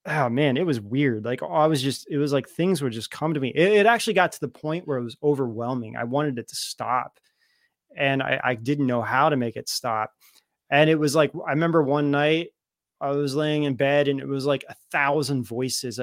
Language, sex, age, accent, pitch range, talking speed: English, male, 20-39, American, 135-185 Hz, 240 wpm